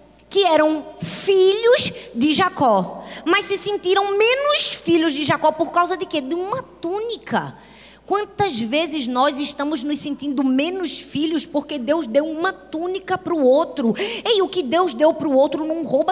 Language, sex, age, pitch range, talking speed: Portuguese, female, 20-39, 290-385 Hz, 160 wpm